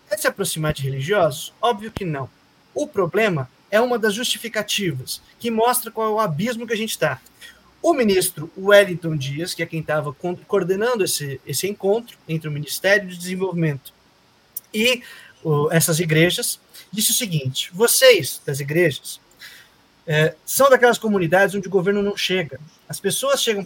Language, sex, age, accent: Portuguese, male, 20-39, Brazilian